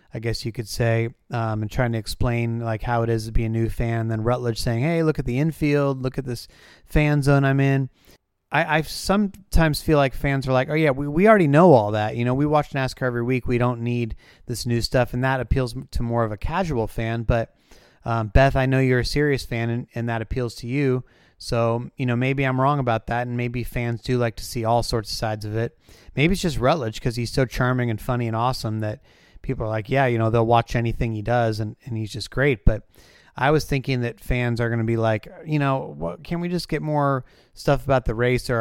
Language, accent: English, American